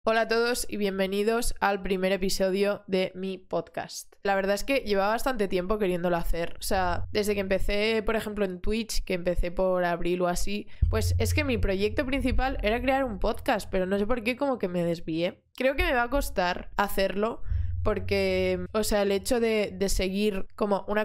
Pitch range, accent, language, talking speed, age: 185-215 Hz, Spanish, Spanish, 200 wpm, 20-39